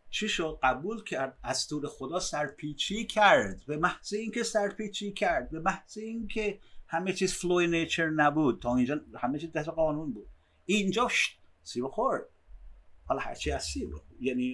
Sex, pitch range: male, 120-195 Hz